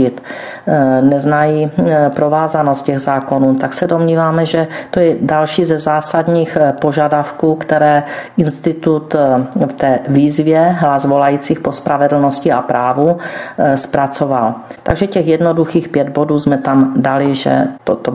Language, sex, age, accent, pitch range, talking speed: Czech, female, 40-59, native, 140-170 Hz, 120 wpm